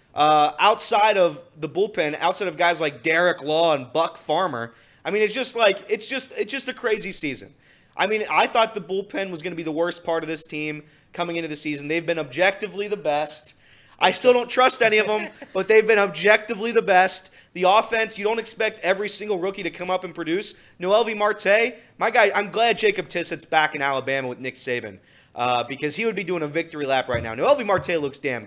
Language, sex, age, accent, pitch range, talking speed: English, male, 20-39, American, 160-210 Hz, 230 wpm